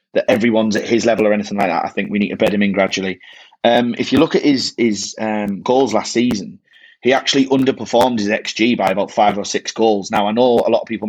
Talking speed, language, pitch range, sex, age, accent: 255 wpm, English, 105-125 Hz, male, 30-49, British